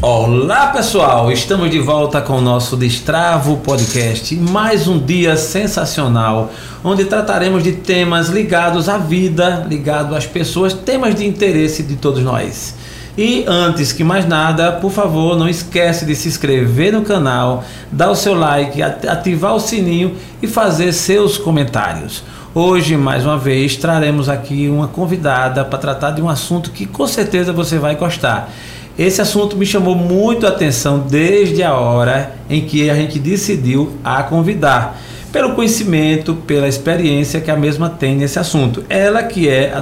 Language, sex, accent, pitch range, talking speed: Portuguese, male, Brazilian, 140-190 Hz, 160 wpm